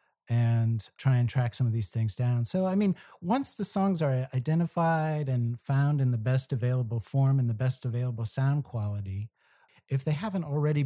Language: English